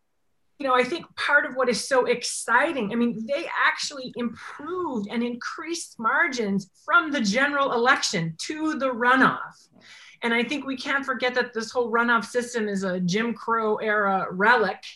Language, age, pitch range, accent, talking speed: English, 30-49, 210-265 Hz, American, 170 wpm